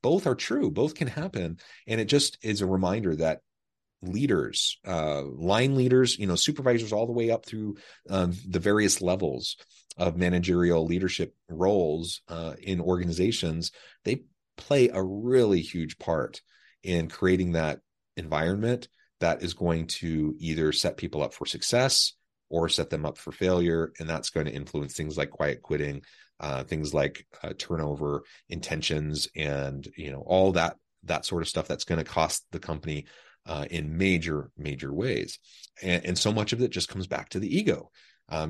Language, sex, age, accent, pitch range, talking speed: English, male, 30-49, American, 80-95 Hz, 170 wpm